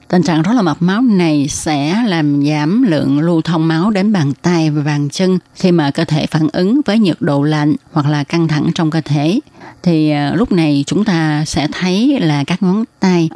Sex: female